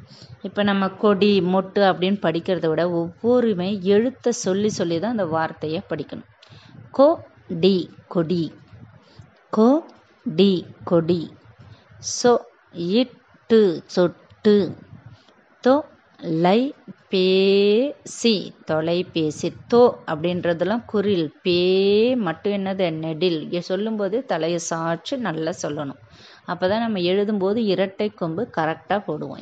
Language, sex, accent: Tamil, female, native